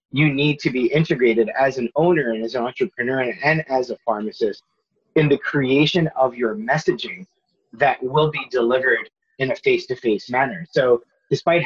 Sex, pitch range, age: male, 125-170 Hz, 30-49